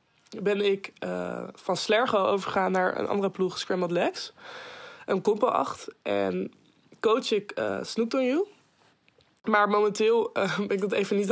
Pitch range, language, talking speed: 185-210 Hz, Dutch, 155 wpm